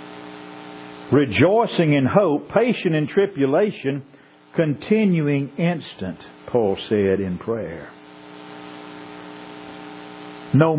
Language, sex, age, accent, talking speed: English, male, 50-69, American, 70 wpm